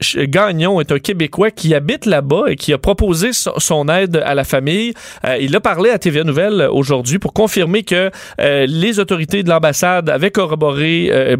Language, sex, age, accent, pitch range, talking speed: French, male, 30-49, Canadian, 140-175 Hz, 185 wpm